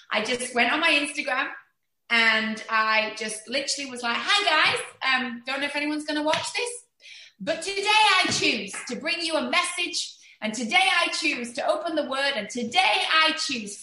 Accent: British